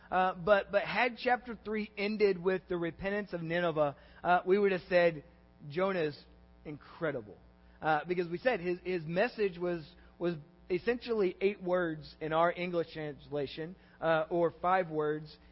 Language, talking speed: English, 155 wpm